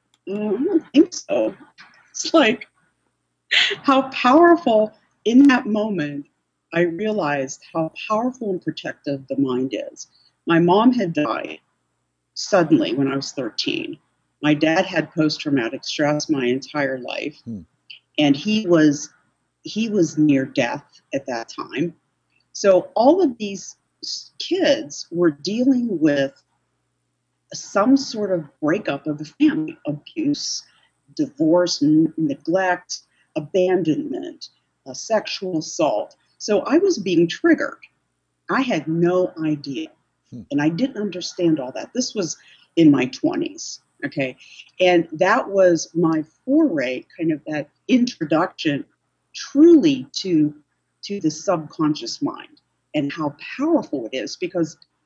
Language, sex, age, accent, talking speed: English, female, 50-69, American, 120 wpm